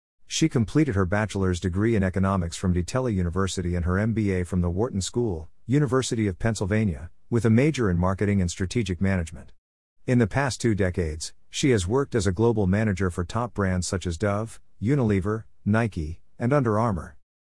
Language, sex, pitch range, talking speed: English, male, 90-115 Hz, 175 wpm